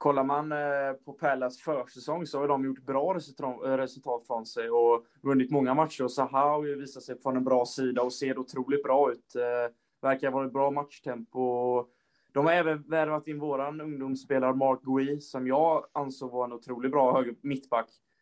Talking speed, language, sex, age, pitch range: 180 wpm, Swedish, male, 20-39, 130-145 Hz